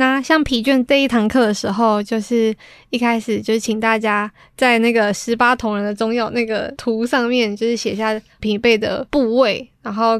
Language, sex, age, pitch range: Chinese, female, 20-39, 215-245 Hz